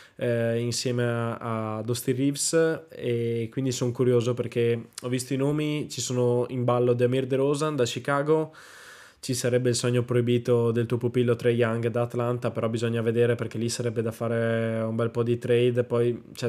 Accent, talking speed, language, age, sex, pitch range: native, 180 wpm, Italian, 20-39, male, 115-125 Hz